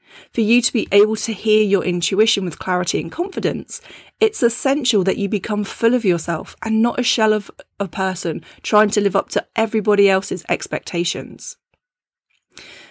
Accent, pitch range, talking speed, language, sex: British, 180-230 Hz, 165 wpm, English, female